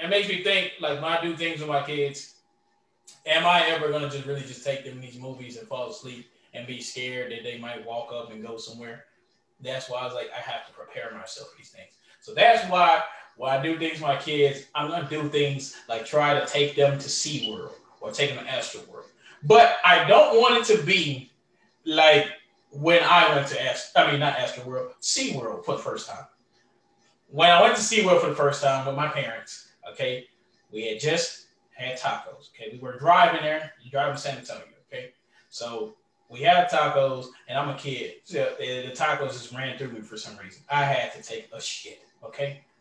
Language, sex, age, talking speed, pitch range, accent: English, male, 20-39, 215 wpm, 130-170 Hz, American